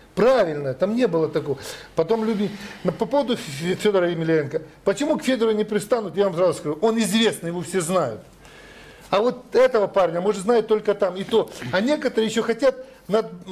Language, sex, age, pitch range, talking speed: Russian, male, 50-69, 170-225 Hz, 180 wpm